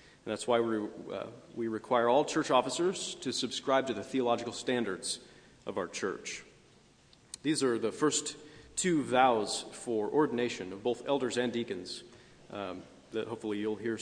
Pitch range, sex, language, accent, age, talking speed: 110-145 Hz, male, English, American, 40-59, 155 wpm